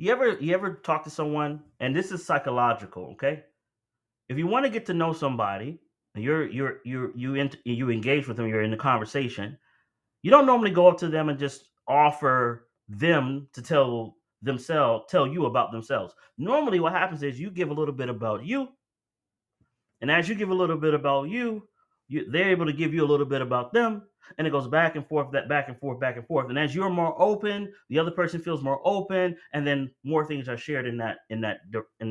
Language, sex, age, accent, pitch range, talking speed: English, male, 30-49, American, 120-170 Hz, 220 wpm